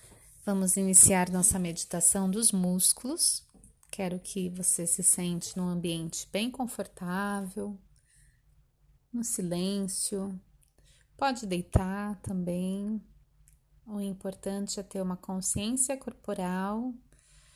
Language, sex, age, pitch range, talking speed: Portuguese, female, 30-49, 185-215 Hz, 90 wpm